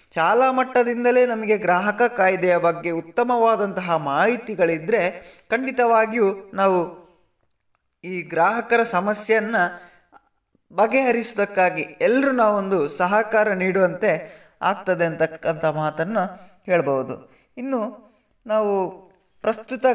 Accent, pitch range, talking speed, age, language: native, 180-230 Hz, 75 wpm, 20-39, Kannada